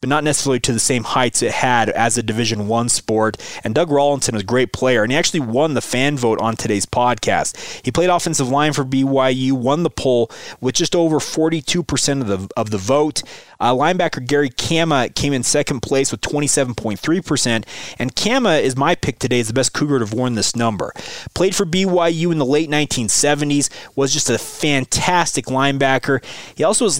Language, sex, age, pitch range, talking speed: English, male, 30-49, 115-150 Hz, 195 wpm